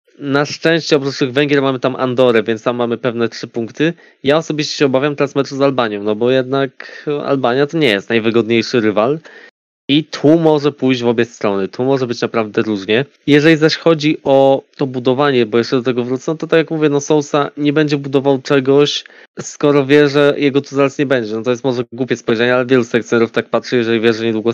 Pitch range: 125-150 Hz